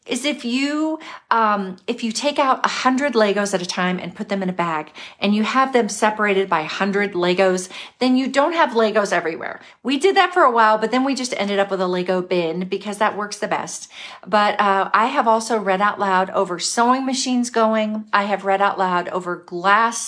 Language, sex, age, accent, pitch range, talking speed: English, female, 40-59, American, 195-245 Hz, 220 wpm